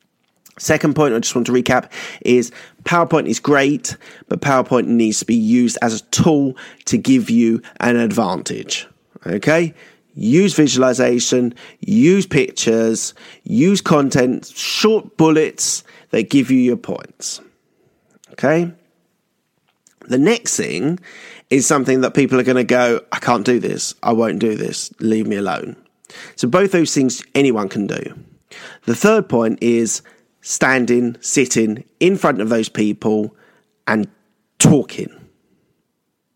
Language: English